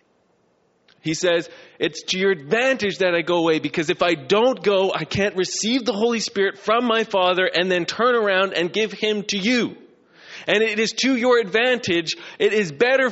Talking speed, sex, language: 190 wpm, male, English